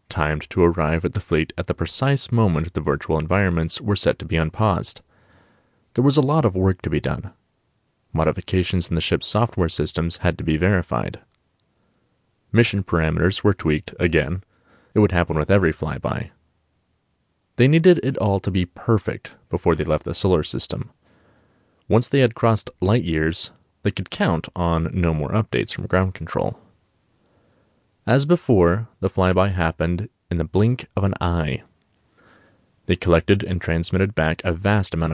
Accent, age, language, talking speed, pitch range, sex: American, 30-49, English, 165 wpm, 85-110 Hz, male